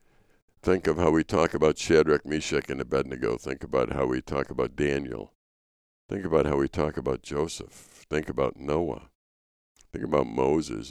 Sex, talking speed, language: male, 165 wpm, English